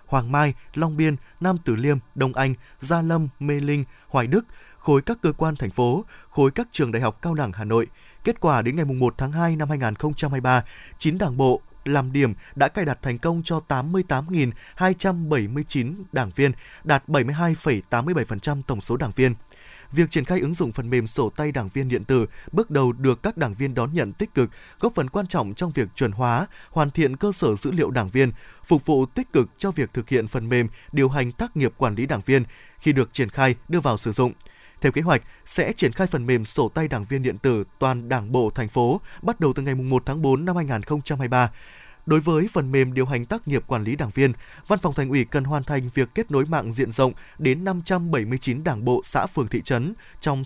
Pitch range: 125-155 Hz